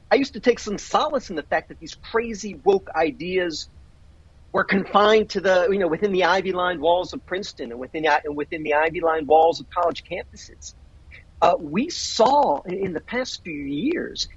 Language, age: English, 40-59